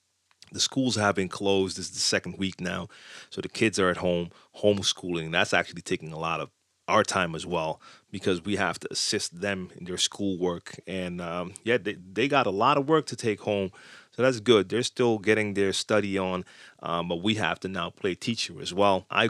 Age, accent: 30-49, American